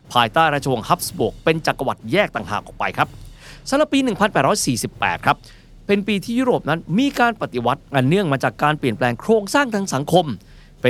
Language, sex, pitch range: Thai, male, 125-200 Hz